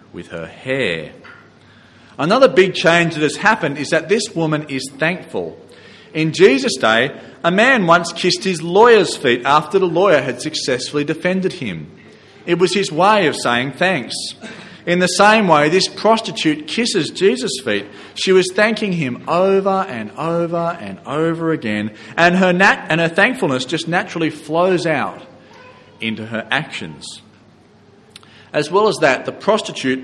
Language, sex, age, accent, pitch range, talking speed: English, male, 40-59, Australian, 130-185 Hz, 155 wpm